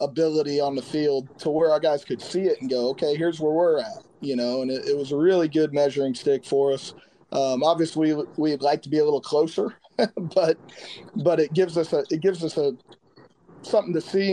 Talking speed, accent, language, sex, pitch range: 225 wpm, American, English, male, 140-170 Hz